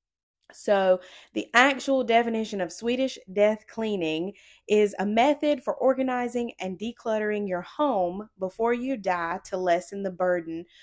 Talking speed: 135 wpm